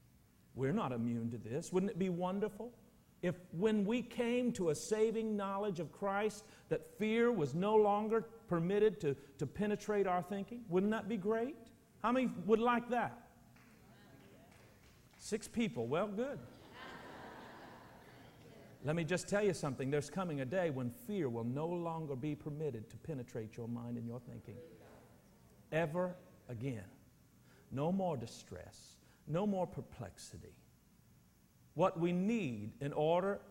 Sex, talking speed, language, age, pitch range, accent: male, 145 wpm, English, 50-69, 125-205 Hz, American